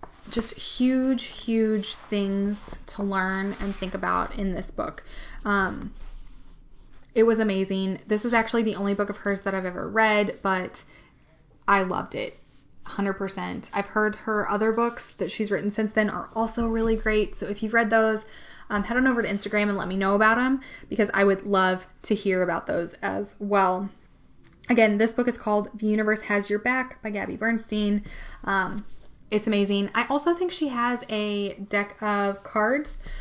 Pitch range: 200-230 Hz